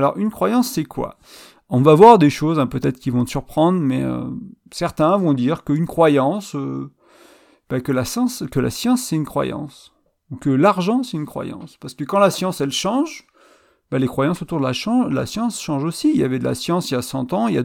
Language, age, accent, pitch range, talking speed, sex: French, 30-49, French, 135-195 Hz, 245 wpm, male